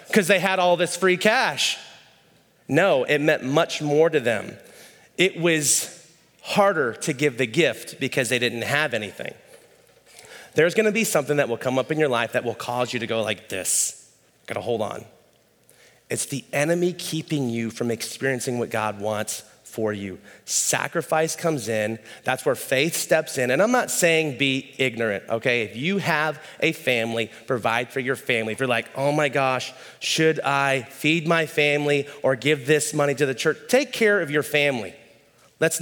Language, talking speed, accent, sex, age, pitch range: English, 180 wpm, American, male, 30-49, 135-170 Hz